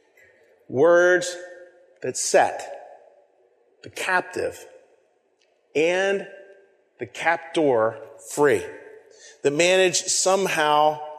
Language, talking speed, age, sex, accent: English, 65 wpm, 40-59, male, American